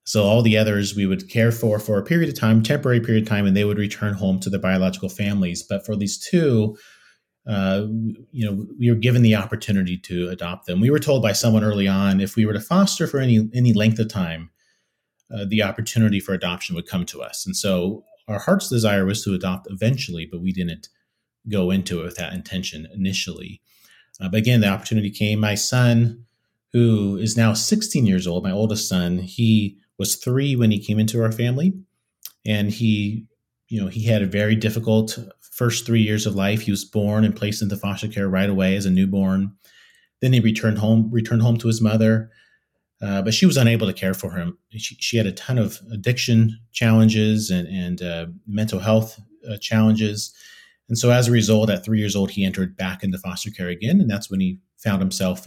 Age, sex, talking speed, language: 30-49, male, 210 wpm, English